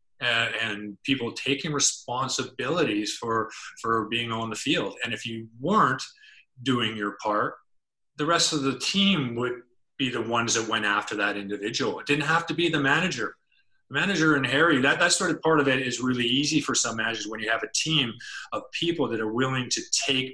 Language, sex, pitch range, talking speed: English, male, 110-145 Hz, 195 wpm